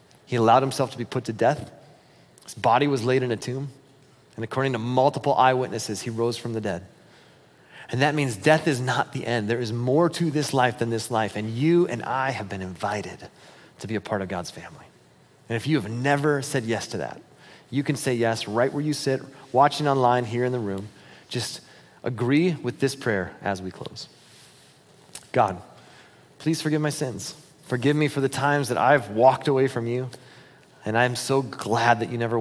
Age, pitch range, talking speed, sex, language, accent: 30-49, 115-145 Hz, 205 wpm, male, English, American